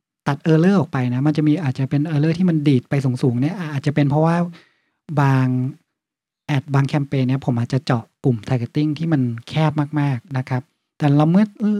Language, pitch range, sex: Thai, 130-165 Hz, male